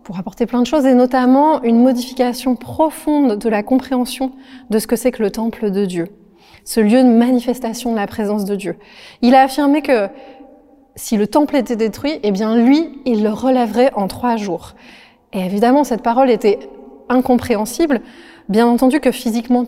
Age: 20-39